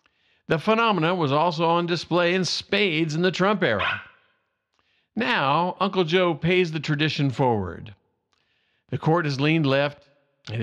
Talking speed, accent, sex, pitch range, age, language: 140 wpm, American, male, 135-185 Hz, 50-69, English